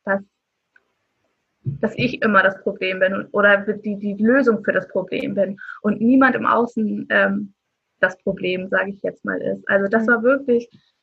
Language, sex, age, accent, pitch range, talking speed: German, female, 20-39, German, 205-250 Hz, 170 wpm